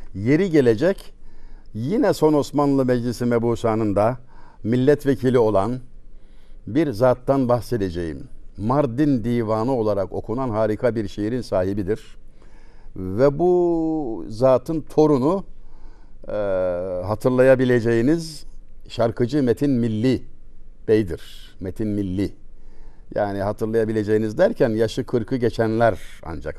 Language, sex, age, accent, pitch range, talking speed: Turkish, male, 60-79, native, 100-135 Hz, 90 wpm